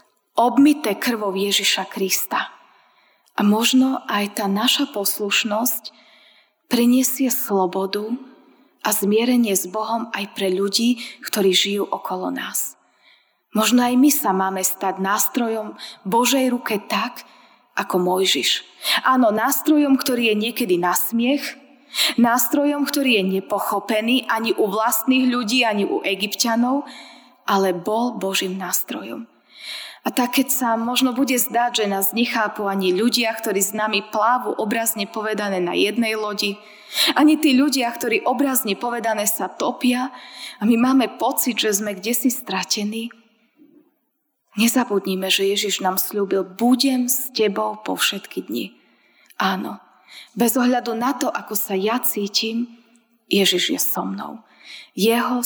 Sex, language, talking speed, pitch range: female, Slovak, 130 wpm, 200-250 Hz